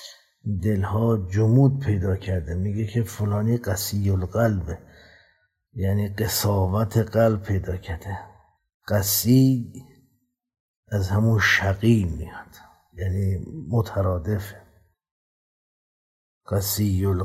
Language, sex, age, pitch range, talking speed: Persian, male, 50-69, 95-110 Hz, 75 wpm